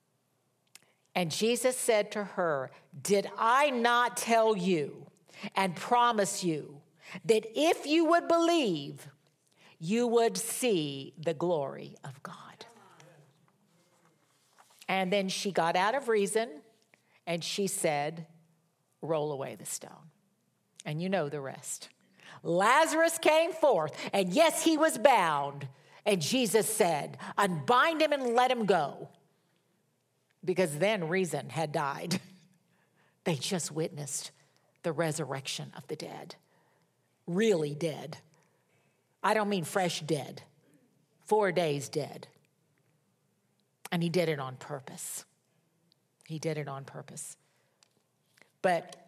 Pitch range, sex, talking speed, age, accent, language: 155-210 Hz, female, 115 wpm, 50-69, American, English